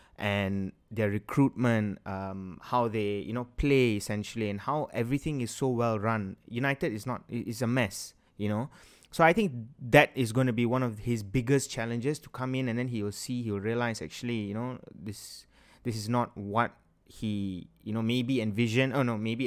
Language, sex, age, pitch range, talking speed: English, male, 20-39, 110-140 Hz, 200 wpm